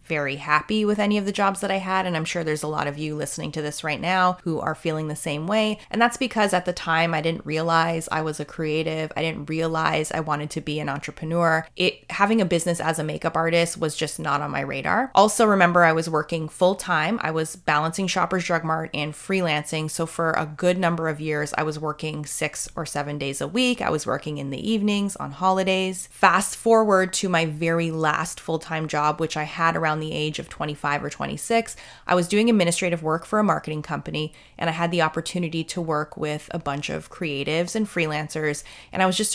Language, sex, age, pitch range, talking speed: English, female, 20-39, 155-185 Hz, 230 wpm